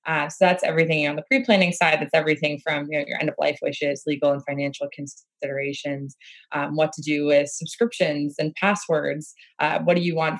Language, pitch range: English, 140-160 Hz